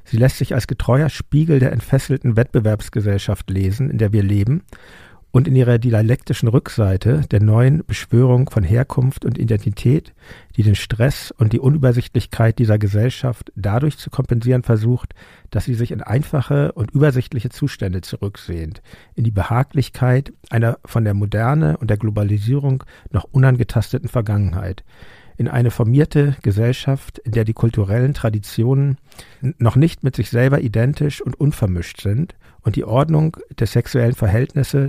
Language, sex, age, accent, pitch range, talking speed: German, male, 50-69, German, 110-135 Hz, 145 wpm